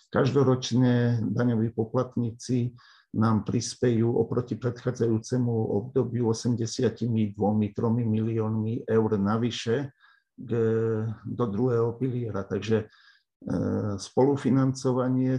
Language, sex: Slovak, male